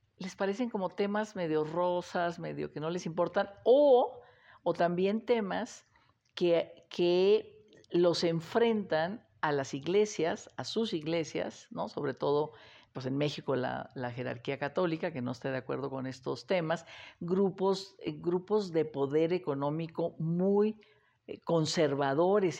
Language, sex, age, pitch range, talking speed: Spanish, female, 50-69, 145-180 Hz, 125 wpm